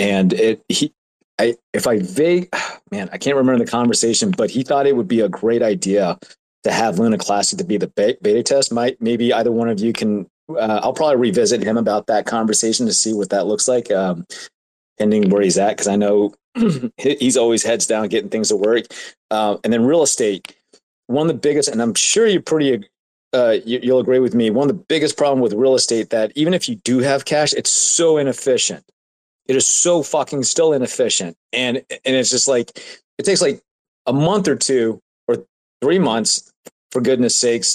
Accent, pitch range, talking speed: American, 115-150 Hz, 205 wpm